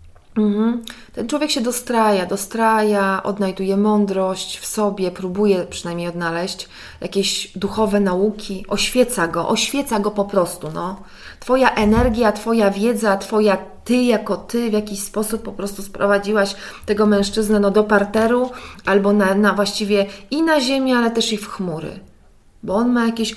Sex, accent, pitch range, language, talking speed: female, native, 190-230 Hz, Polish, 145 wpm